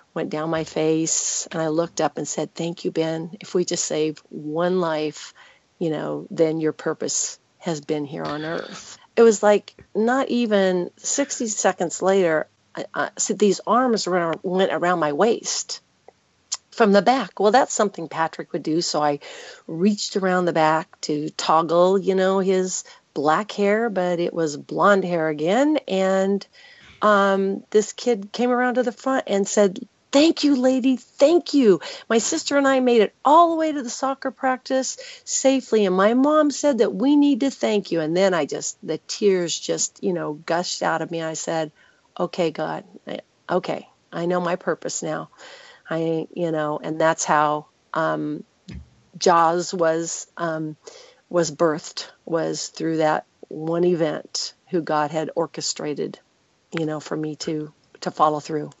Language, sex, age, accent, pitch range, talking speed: English, female, 40-59, American, 160-230 Hz, 170 wpm